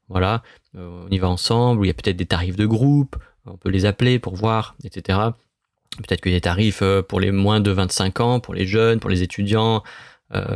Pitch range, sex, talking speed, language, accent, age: 95-115 Hz, male, 225 wpm, French, French, 30-49